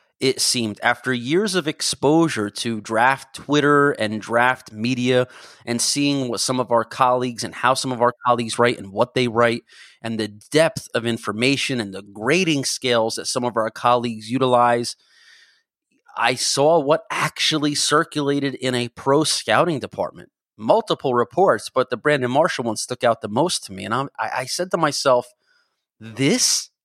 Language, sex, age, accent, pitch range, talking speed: English, male, 30-49, American, 120-140 Hz, 170 wpm